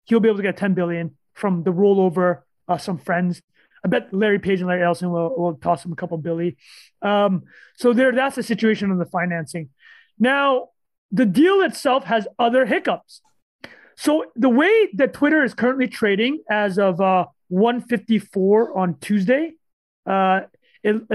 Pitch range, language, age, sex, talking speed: 180-240 Hz, English, 30-49, male, 165 wpm